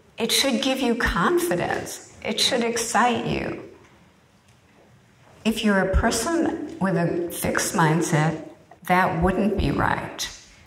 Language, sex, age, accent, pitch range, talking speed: English, female, 50-69, American, 160-205 Hz, 120 wpm